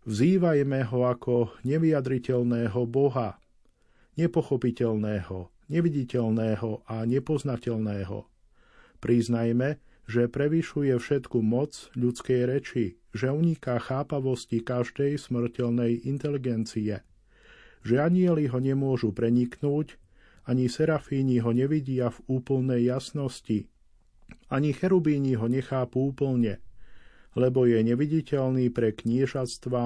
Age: 50-69